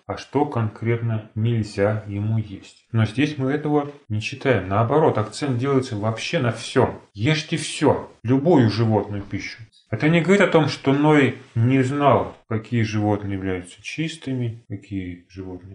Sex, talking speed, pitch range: male, 145 wpm, 105-135 Hz